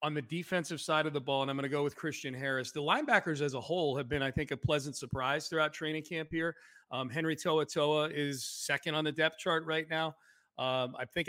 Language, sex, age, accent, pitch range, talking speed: English, male, 40-59, American, 140-165 Hz, 245 wpm